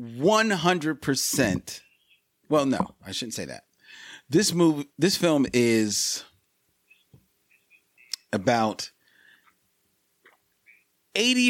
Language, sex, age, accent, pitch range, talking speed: English, male, 40-59, American, 120-155 Hz, 80 wpm